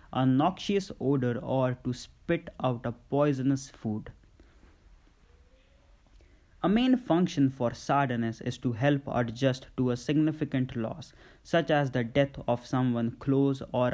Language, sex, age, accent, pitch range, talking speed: English, male, 20-39, Indian, 115-135 Hz, 135 wpm